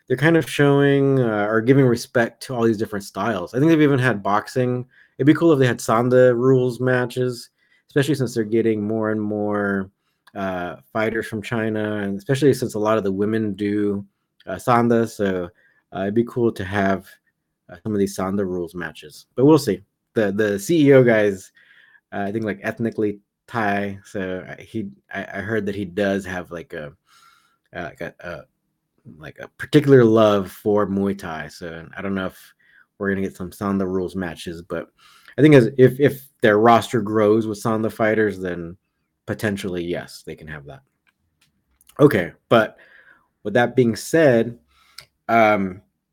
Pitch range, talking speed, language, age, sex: 100-130 Hz, 175 wpm, English, 20-39, male